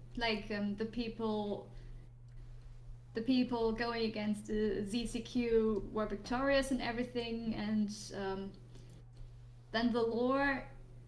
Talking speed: 105 wpm